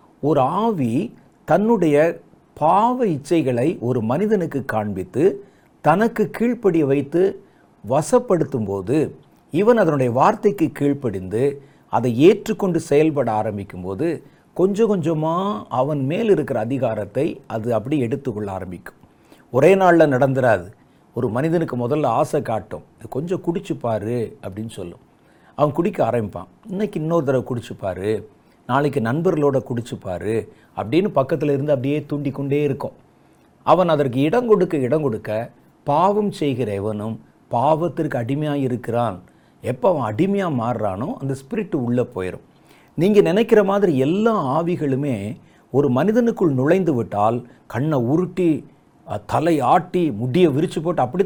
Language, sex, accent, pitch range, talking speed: Tamil, male, native, 120-175 Hz, 110 wpm